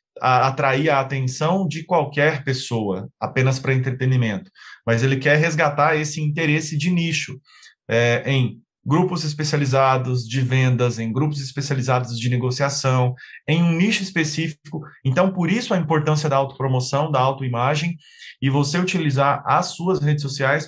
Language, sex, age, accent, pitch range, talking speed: Portuguese, male, 20-39, Brazilian, 130-160 Hz, 135 wpm